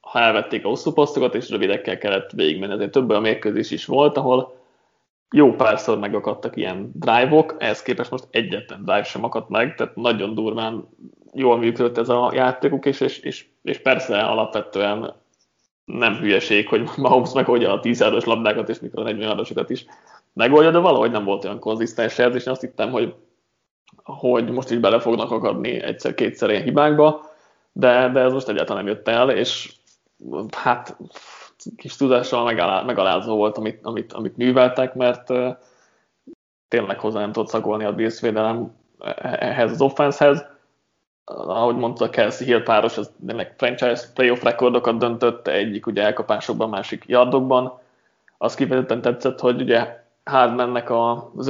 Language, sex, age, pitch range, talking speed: Hungarian, male, 30-49, 115-130 Hz, 145 wpm